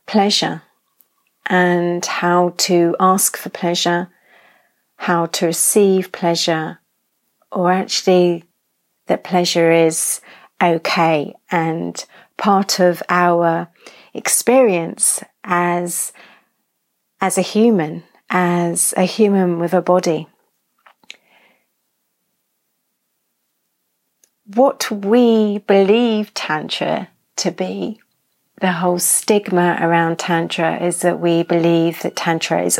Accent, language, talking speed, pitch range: British, English, 90 wpm, 170-195 Hz